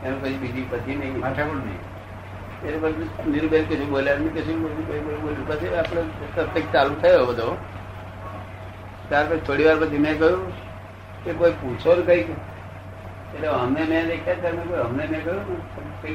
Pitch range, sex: 95-140 Hz, male